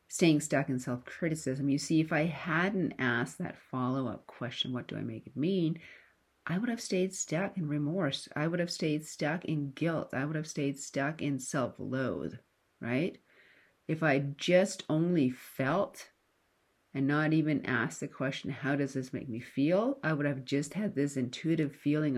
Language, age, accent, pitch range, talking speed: English, 40-59, American, 130-160 Hz, 180 wpm